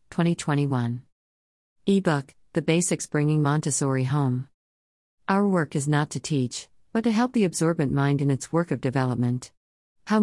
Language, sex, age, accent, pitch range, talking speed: English, female, 50-69, American, 125-160 Hz, 145 wpm